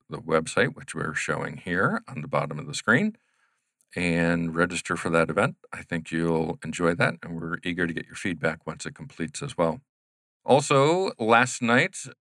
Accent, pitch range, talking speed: American, 85-100 Hz, 180 wpm